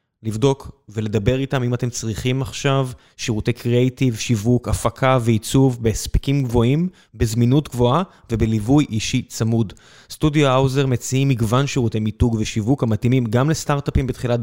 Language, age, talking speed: Hebrew, 20-39, 125 wpm